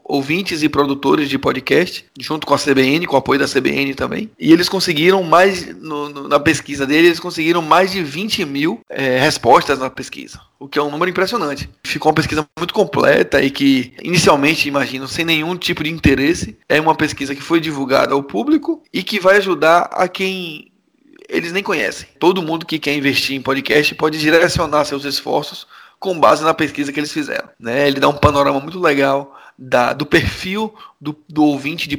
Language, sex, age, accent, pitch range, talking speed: Portuguese, male, 20-39, Brazilian, 140-175 Hz, 190 wpm